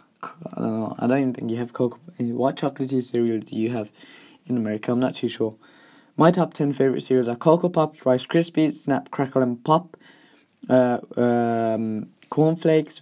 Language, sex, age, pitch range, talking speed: English, male, 20-39, 115-145 Hz, 185 wpm